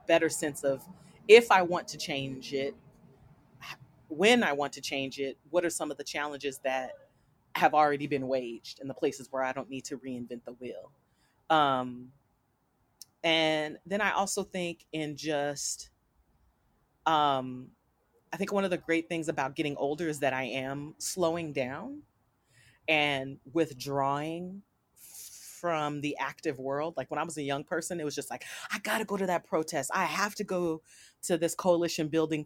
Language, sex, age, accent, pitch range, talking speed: English, female, 30-49, American, 135-175 Hz, 175 wpm